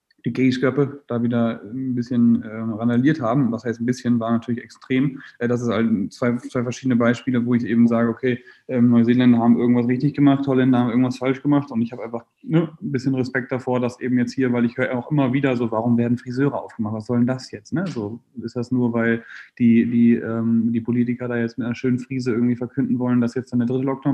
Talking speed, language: 235 wpm, German